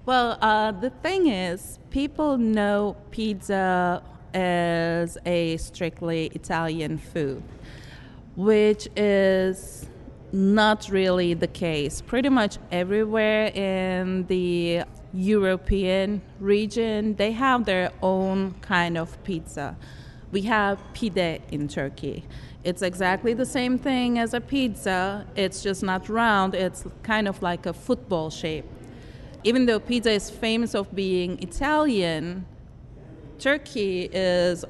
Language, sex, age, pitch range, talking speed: English, female, 30-49, 170-215 Hz, 115 wpm